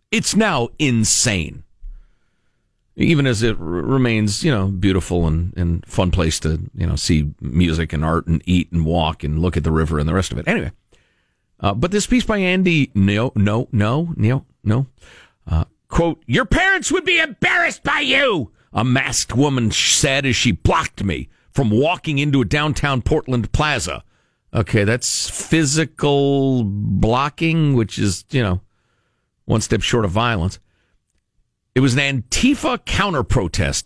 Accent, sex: American, male